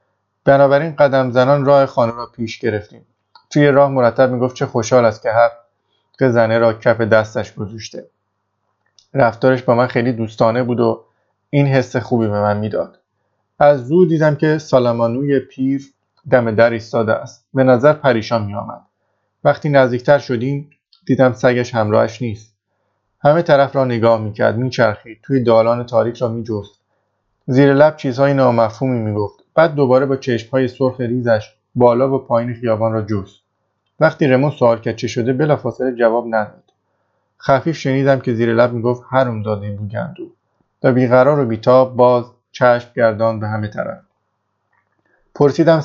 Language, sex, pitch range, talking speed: Persian, male, 115-135 Hz, 155 wpm